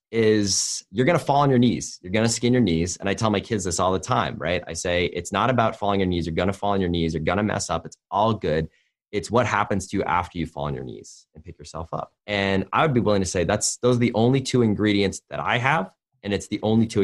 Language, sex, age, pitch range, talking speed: English, male, 30-49, 85-110 Hz, 300 wpm